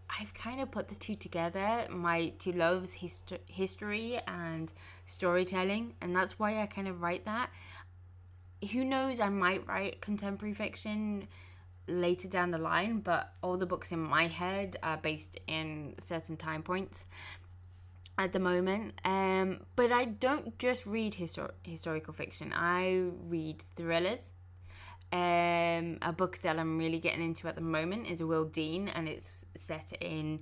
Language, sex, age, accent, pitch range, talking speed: English, female, 20-39, British, 150-190 Hz, 150 wpm